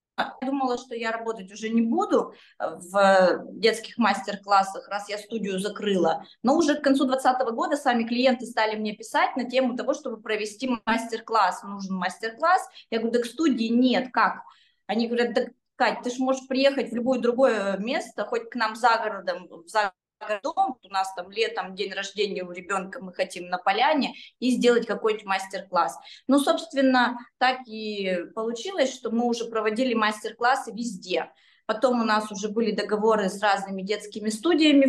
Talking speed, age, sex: 170 wpm, 20-39, female